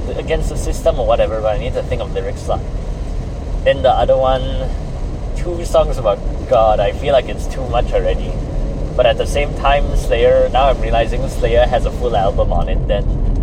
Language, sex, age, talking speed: English, male, 20-39, 195 wpm